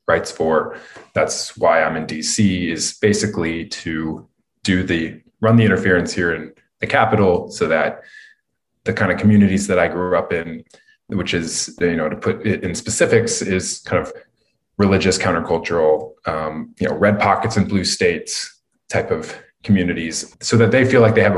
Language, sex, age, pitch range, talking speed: English, male, 20-39, 90-115 Hz, 170 wpm